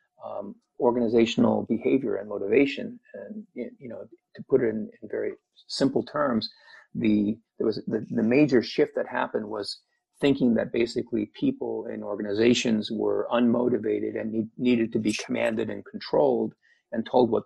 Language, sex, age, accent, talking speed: English, male, 40-59, American, 150 wpm